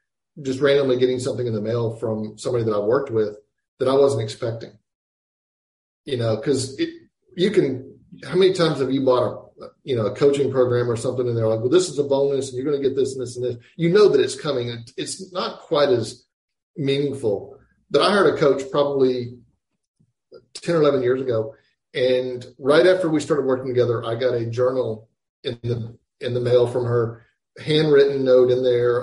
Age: 40-59